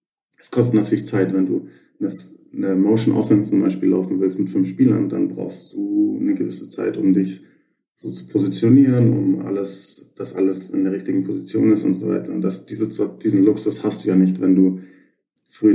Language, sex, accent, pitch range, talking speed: German, male, German, 95-105 Hz, 200 wpm